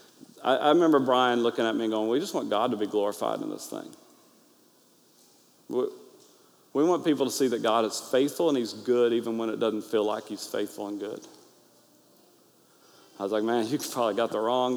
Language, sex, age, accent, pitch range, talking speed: English, male, 40-59, American, 115-150 Hz, 200 wpm